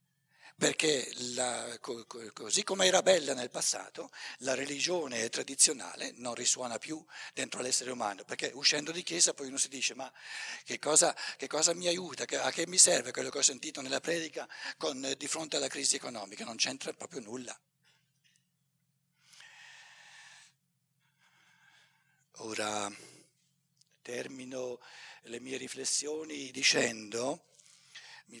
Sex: male